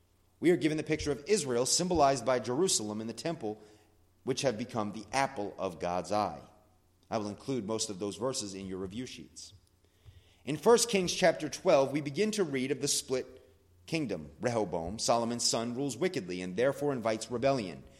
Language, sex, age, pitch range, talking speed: English, male, 30-49, 95-140 Hz, 180 wpm